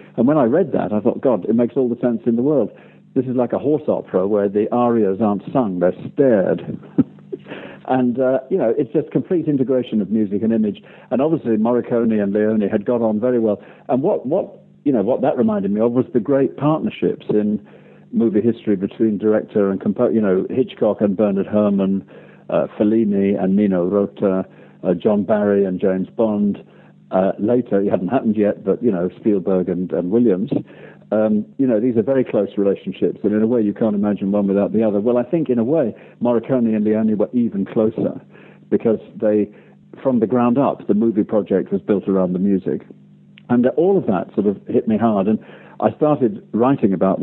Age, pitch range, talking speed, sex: 60-79, 100-120 Hz, 205 wpm, male